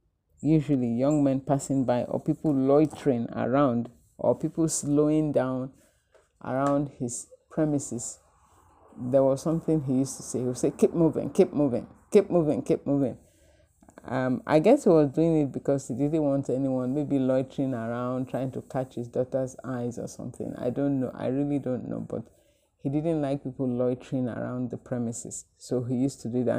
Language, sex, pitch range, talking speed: English, male, 120-145 Hz, 180 wpm